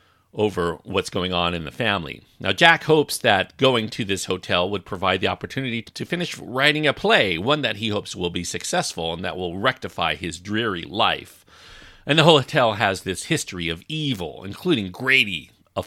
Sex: male